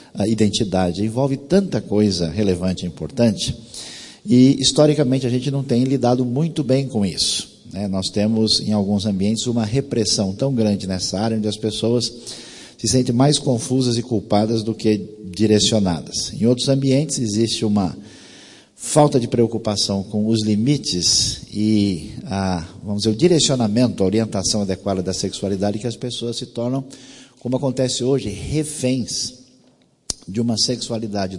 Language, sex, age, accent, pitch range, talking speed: English, male, 50-69, Brazilian, 100-125 Hz, 145 wpm